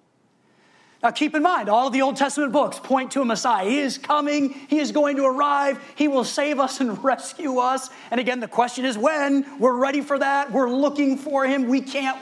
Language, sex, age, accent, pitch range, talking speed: English, male, 40-59, American, 195-265 Hz, 220 wpm